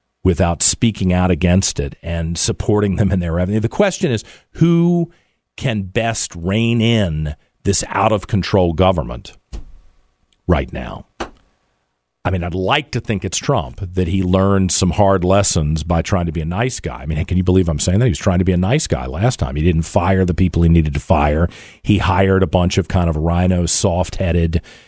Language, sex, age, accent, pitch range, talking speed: English, male, 50-69, American, 85-105 Hz, 195 wpm